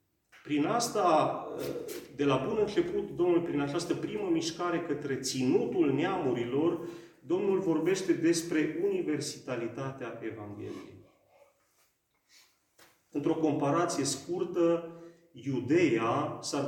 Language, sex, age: Romanian, male, 30-49